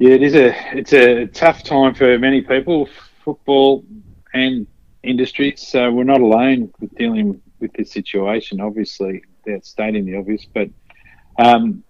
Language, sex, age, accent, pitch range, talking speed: English, male, 50-69, Australian, 105-130 Hz, 150 wpm